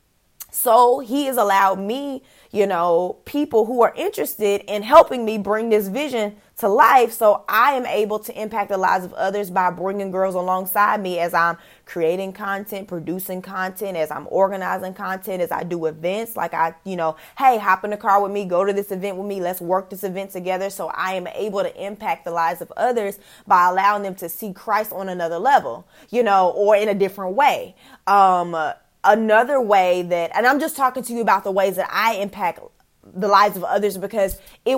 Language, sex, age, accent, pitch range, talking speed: English, female, 20-39, American, 185-220 Hz, 205 wpm